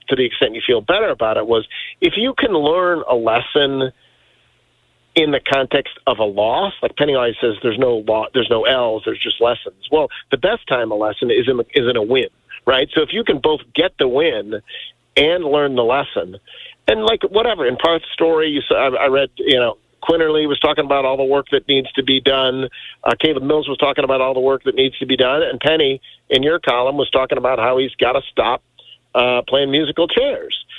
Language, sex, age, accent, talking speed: English, male, 50-69, American, 225 wpm